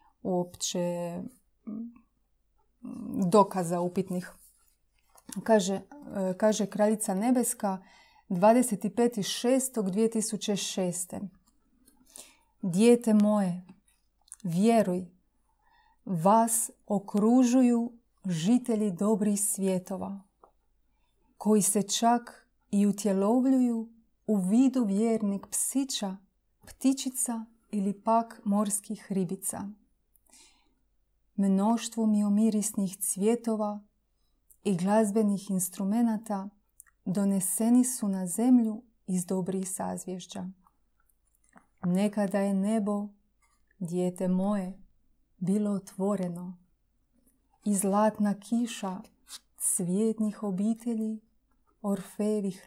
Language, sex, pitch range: Croatian, female, 195-225 Hz